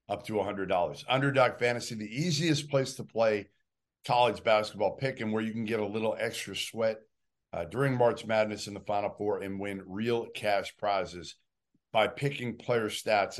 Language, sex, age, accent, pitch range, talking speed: English, male, 50-69, American, 105-125 Hz, 175 wpm